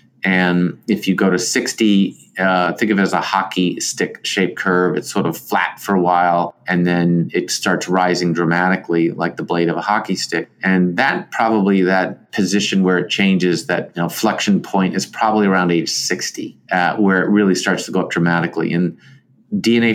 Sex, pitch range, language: male, 90-100 Hz, English